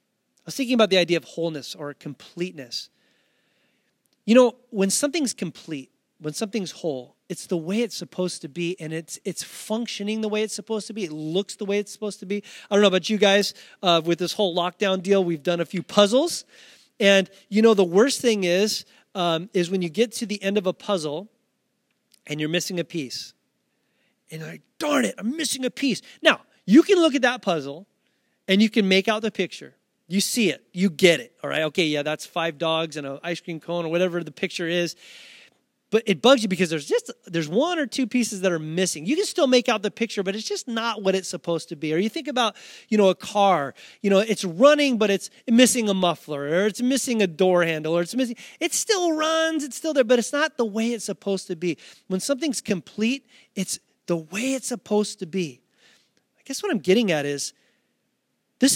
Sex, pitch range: male, 175-235 Hz